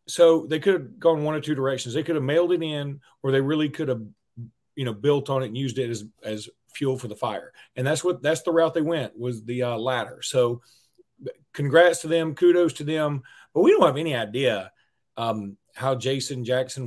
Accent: American